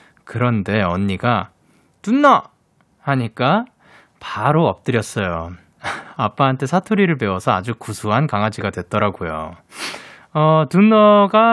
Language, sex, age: Korean, male, 20-39